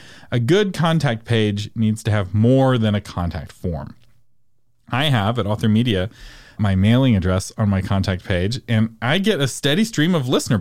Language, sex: English, male